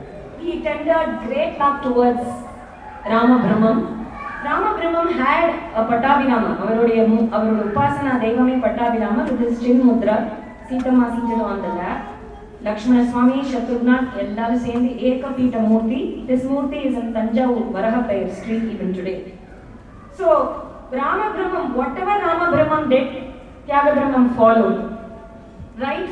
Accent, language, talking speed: Indian, English, 115 wpm